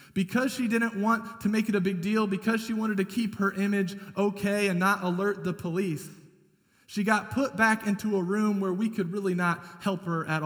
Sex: male